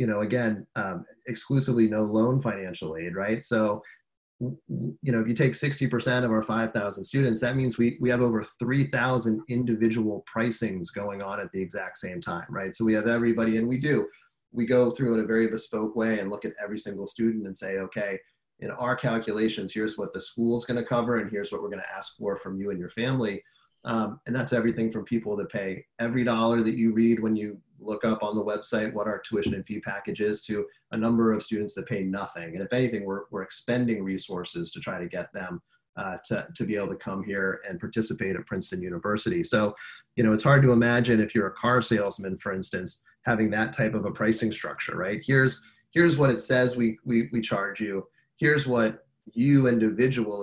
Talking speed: 215 wpm